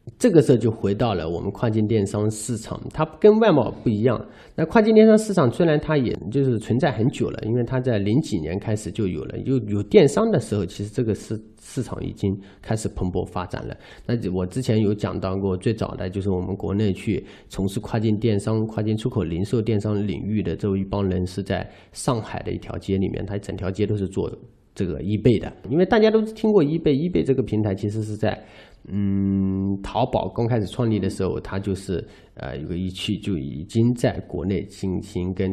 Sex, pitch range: male, 95-125 Hz